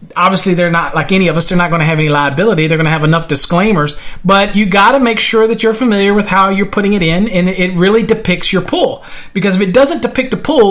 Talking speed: 270 wpm